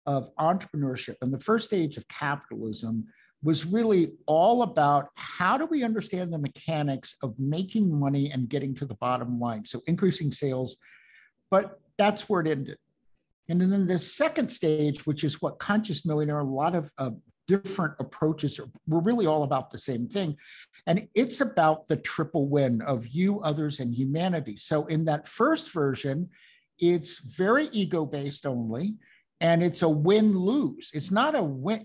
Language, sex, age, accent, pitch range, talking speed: English, male, 50-69, American, 145-200 Hz, 165 wpm